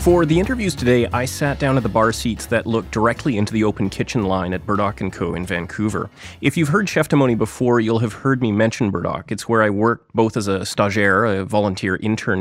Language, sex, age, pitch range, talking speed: English, male, 30-49, 100-130 Hz, 230 wpm